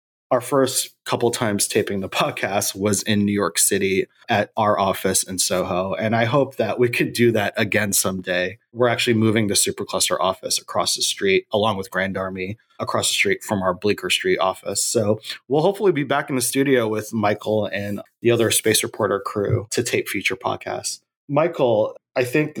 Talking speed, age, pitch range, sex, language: 190 wpm, 30-49, 100-125 Hz, male, English